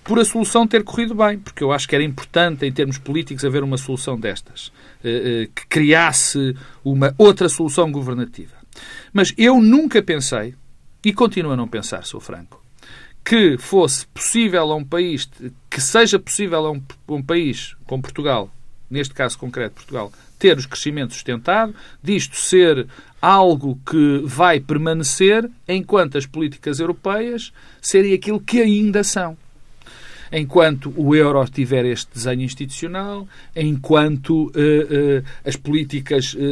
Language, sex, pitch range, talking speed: Portuguese, male, 135-195 Hz, 135 wpm